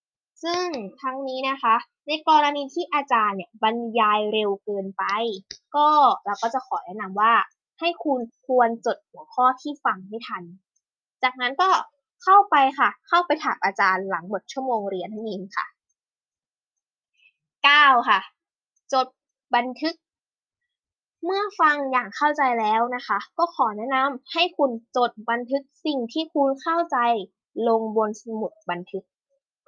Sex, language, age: female, Thai, 10-29